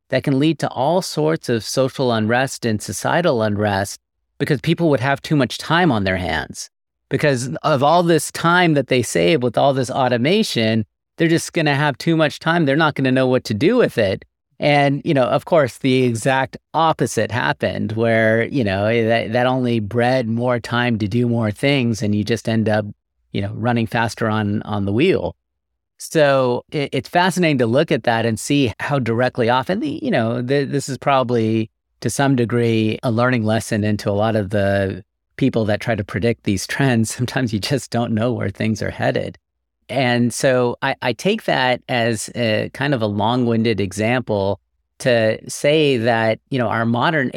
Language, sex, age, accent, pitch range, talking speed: English, male, 40-59, American, 110-135 Hz, 190 wpm